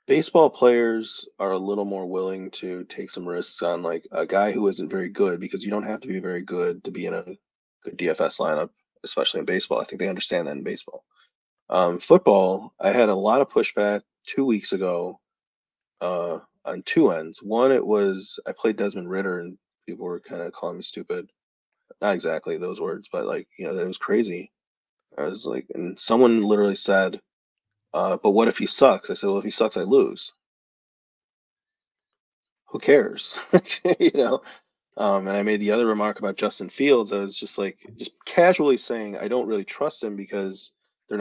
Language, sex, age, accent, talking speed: English, male, 30-49, American, 195 wpm